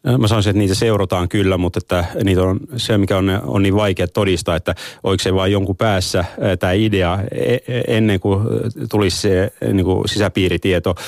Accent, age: native, 30-49